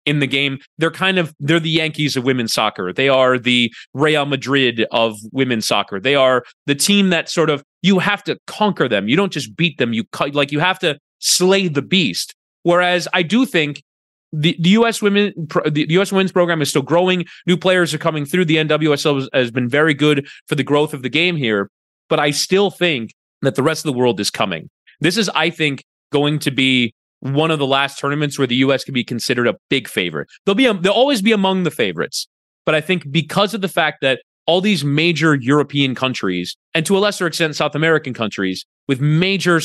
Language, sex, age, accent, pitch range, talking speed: English, male, 30-49, American, 135-180 Hz, 220 wpm